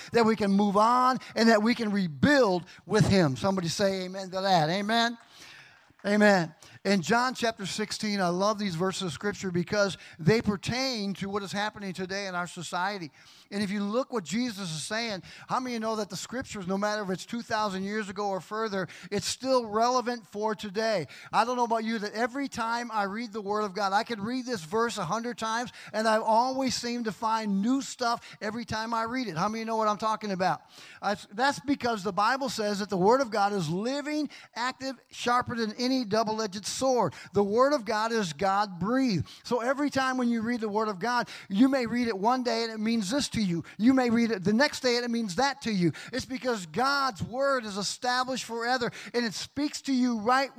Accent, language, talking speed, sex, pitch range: American, English, 220 wpm, male, 205-250 Hz